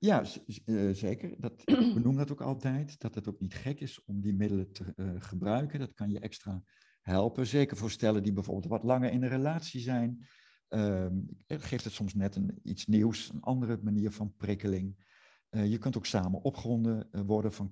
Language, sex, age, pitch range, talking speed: Dutch, male, 50-69, 95-120 Hz, 195 wpm